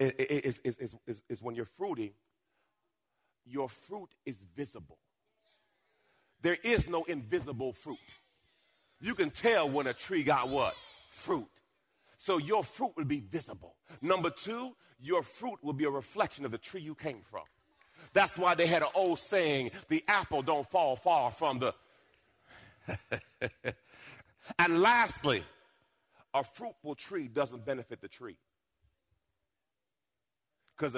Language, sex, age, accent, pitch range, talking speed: English, male, 40-59, American, 120-175 Hz, 135 wpm